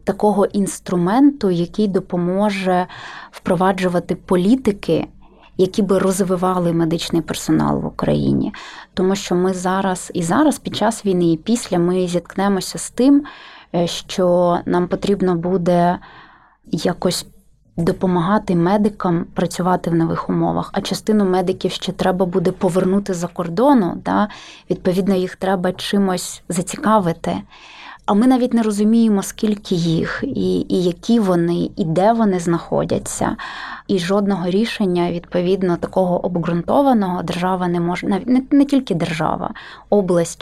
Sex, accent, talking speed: female, native, 125 wpm